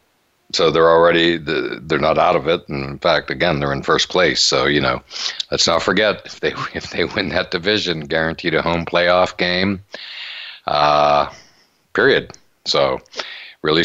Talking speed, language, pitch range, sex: 170 wpm, English, 75-85 Hz, male